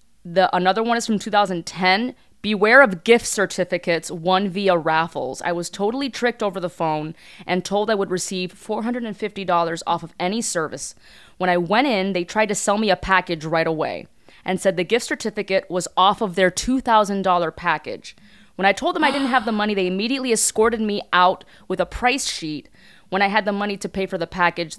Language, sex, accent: English, female, American